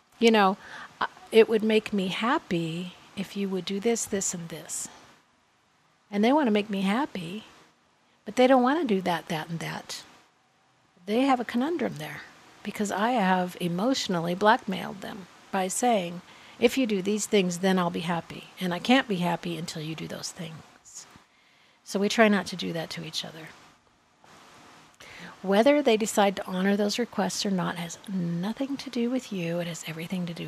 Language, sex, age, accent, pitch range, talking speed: English, female, 50-69, American, 175-230 Hz, 185 wpm